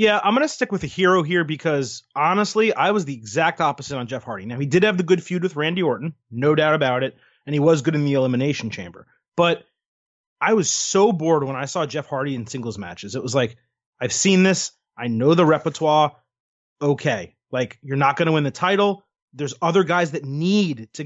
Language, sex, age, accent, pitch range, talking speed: English, male, 30-49, American, 140-190 Hz, 225 wpm